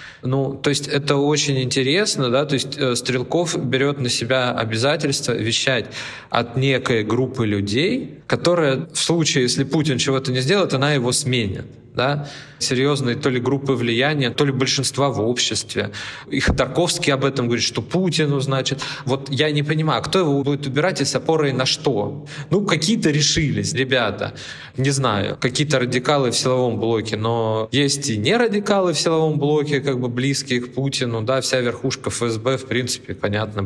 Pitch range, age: 115-145 Hz, 20-39